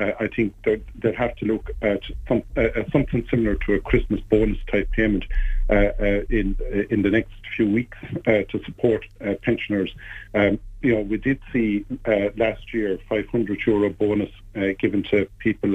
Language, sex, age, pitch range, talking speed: English, male, 50-69, 105-120 Hz, 185 wpm